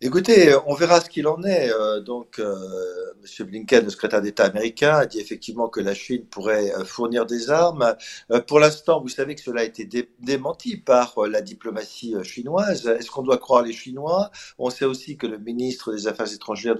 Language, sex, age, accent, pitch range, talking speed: French, male, 50-69, French, 120-155 Hz, 185 wpm